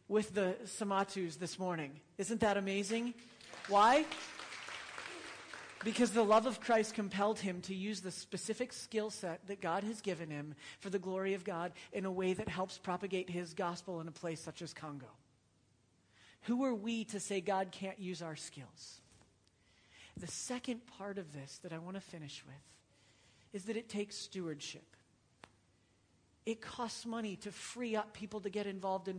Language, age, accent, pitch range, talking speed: English, 40-59, American, 180-225 Hz, 170 wpm